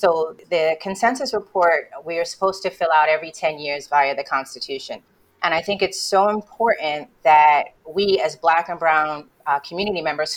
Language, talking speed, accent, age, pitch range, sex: English, 180 wpm, American, 30-49, 155-215 Hz, female